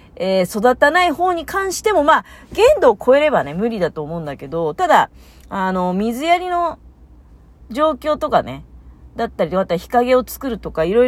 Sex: female